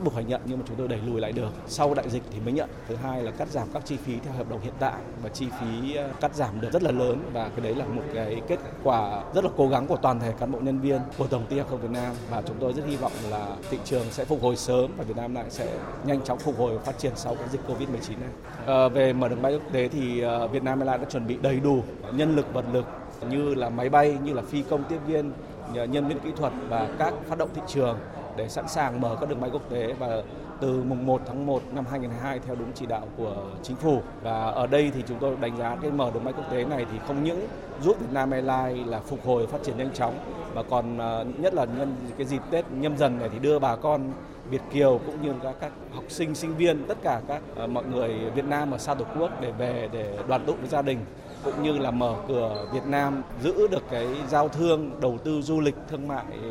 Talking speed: 265 wpm